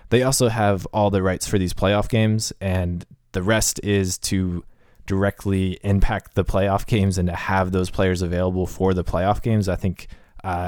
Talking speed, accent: 185 wpm, American